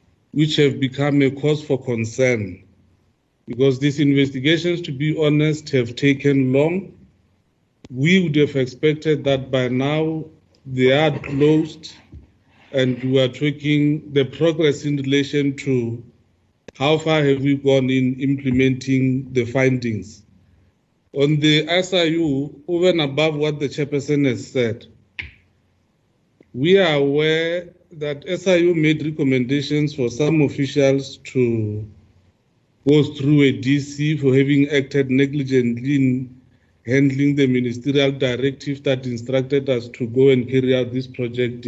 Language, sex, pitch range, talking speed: English, male, 125-145 Hz, 130 wpm